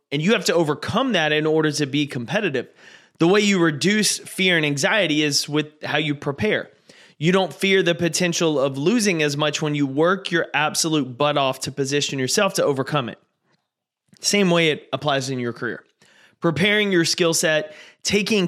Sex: male